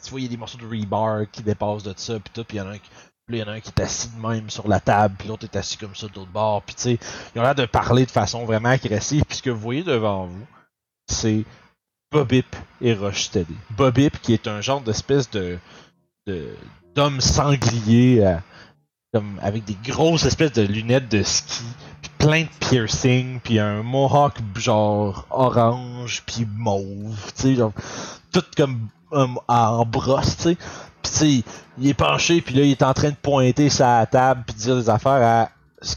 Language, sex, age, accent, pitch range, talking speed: French, male, 30-49, Canadian, 105-130 Hz, 195 wpm